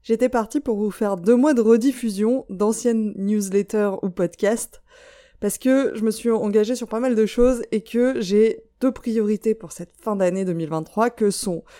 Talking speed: 185 wpm